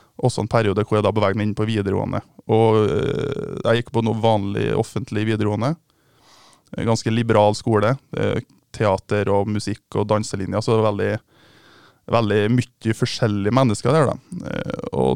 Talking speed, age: 130 wpm, 20-39